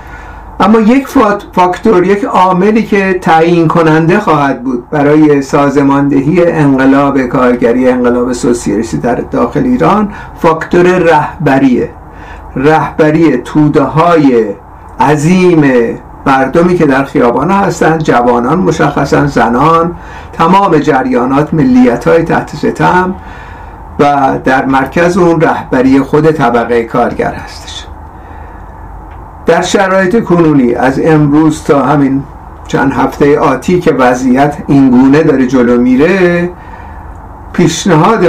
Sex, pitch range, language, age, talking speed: male, 130-170 Hz, Persian, 50-69, 100 wpm